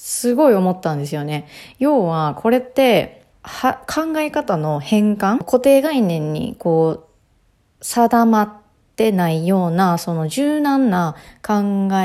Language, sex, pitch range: Japanese, female, 160-220 Hz